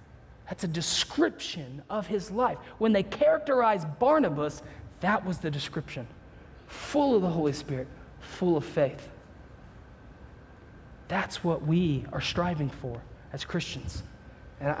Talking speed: 125 wpm